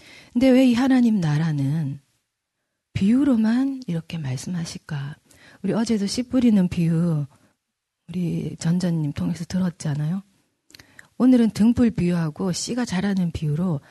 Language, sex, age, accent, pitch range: Korean, female, 40-59, native, 160-235 Hz